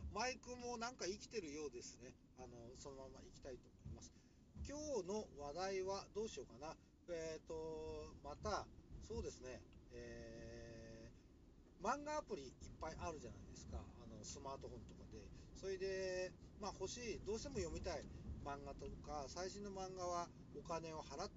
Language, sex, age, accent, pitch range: Japanese, male, 40-59, native, 115-185 Hz